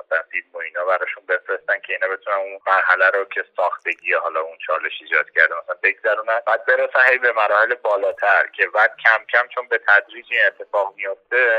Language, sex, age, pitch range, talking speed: Persian, male, 30-49, 110-170 Hz, 180 wpm